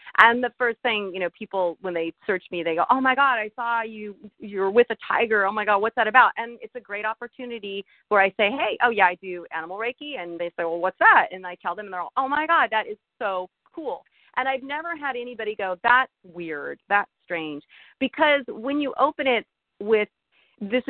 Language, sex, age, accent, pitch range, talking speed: English, female, 40-59, American, 180-245 Hz, 235 wpm